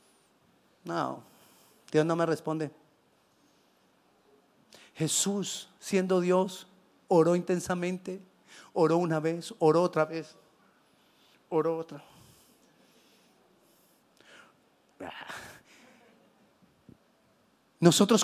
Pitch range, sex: 155-205 Hz, male